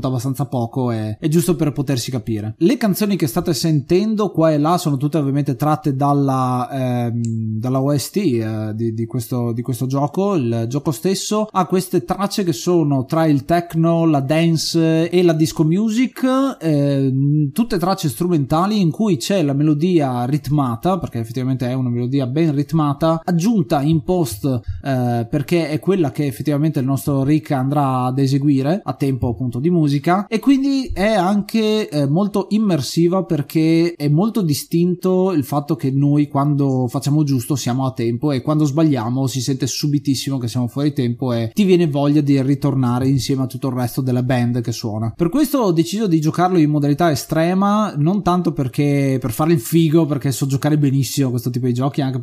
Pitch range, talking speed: 130-170 Hz, 180 wpm